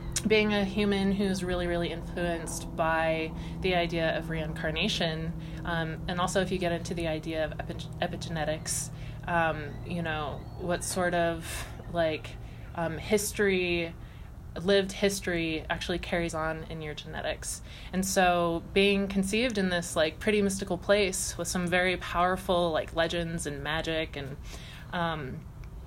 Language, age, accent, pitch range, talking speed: English, 20-39, American, 160-190 Hz, 140 wpm